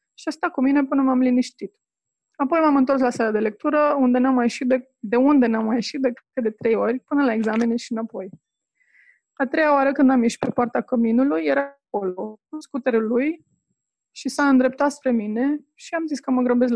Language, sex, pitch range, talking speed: Romanian, female, 230-275 Hz, 210 wpm